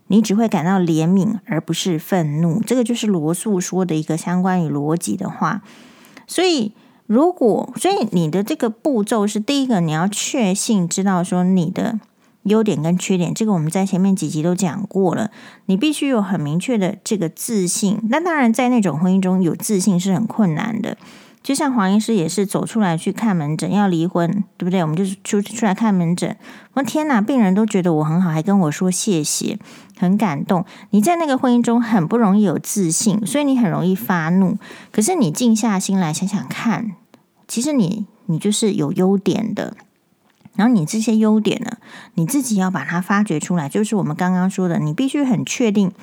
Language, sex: Chinese, female